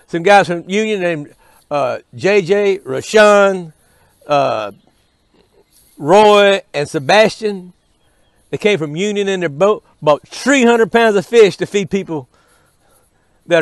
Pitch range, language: 155-200 Hz, English